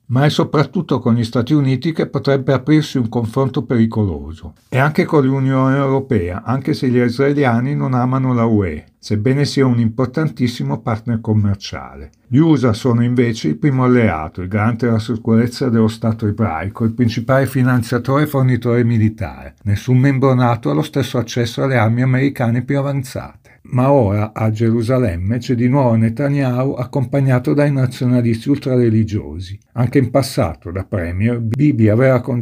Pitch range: 110-135 Hz